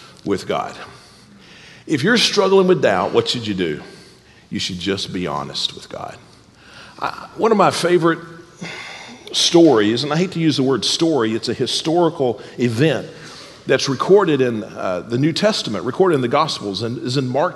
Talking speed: 170 wpm